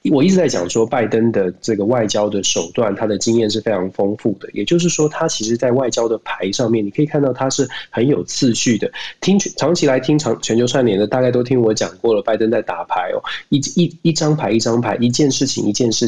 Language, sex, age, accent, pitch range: Chinese, male, 20-39, native, 105-140 Hz